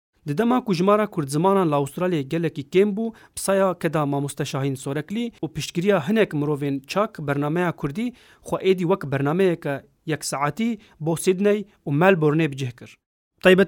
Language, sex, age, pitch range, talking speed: Turkish, male, 40-59, 145-200 Hz, 160 wpm